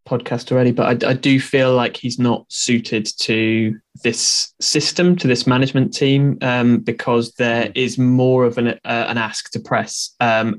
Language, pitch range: English, 115-135 Hz